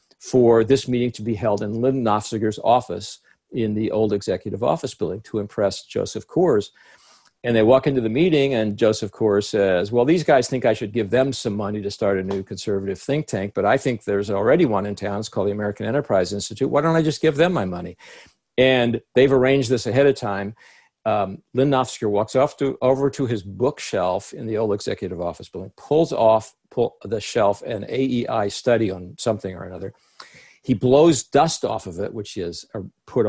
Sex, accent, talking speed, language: male, American, 205 wpm, English